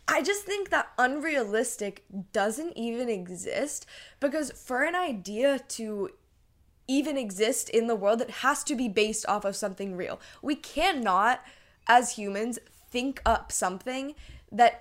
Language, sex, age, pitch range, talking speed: English, female, 10-29, 200-255 Hz, 140 wpm